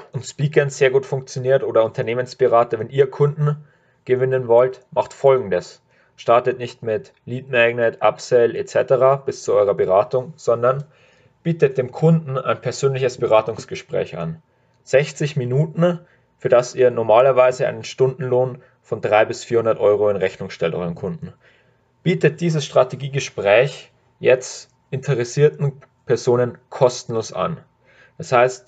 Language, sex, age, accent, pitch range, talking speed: German, male, 30-49, German, 125-140 Hz, 130 wpm